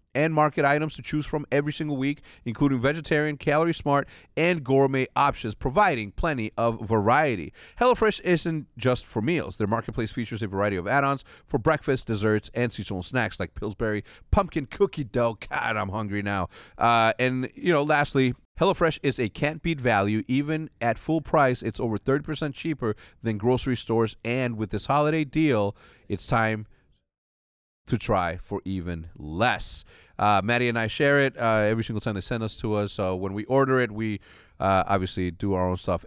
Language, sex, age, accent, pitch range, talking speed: English, male, 30-49, American, 105-155 Hz, 180 wpm